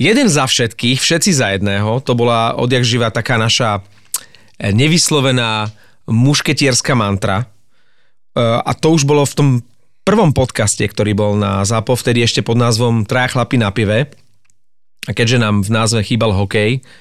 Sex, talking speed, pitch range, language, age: male, 150 wpm, 110-140 Hz, Slovak, 40-59